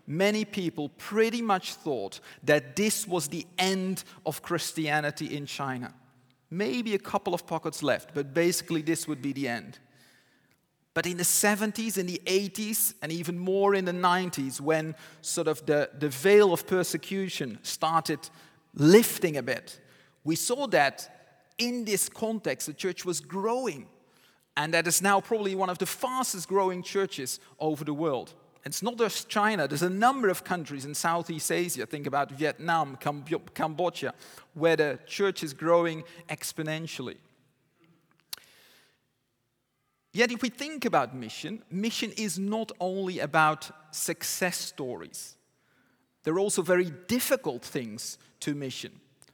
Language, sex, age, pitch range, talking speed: English, male, 30-49, 150-195 Hz, 145 wpm